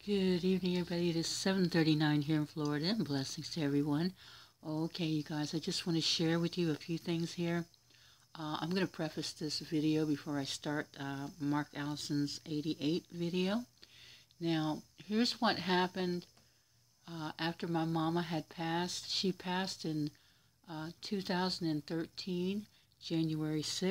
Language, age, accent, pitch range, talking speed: English, 60-79, American, 150-180 Hz, 145 wpm